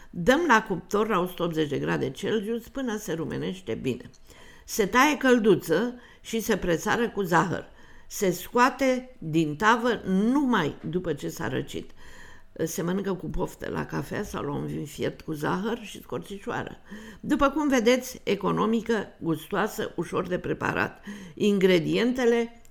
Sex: female